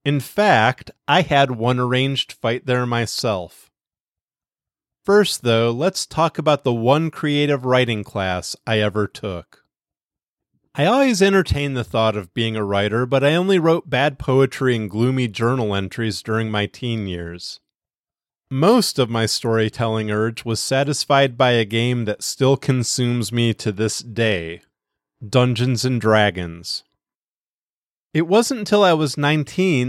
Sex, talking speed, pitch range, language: male, 145 wpm, 110-150 Hz, English